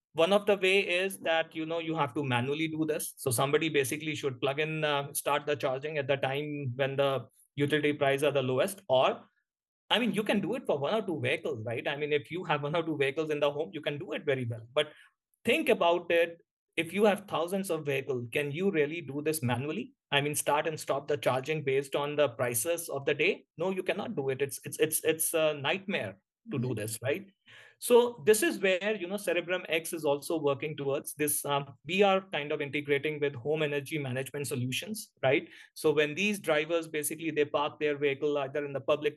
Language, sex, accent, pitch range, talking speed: English, male, Indian, 140-165 Hz, 225 wpm